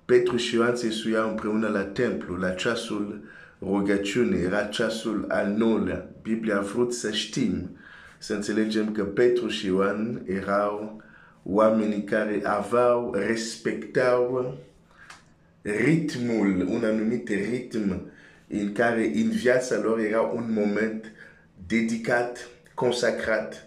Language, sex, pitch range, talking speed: Romanian, male, 100-120 Hz, 85 wpm